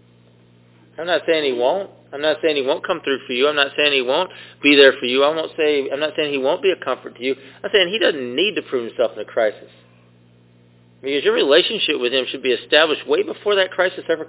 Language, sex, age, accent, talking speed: English, male, 40-59, American, 255 wpm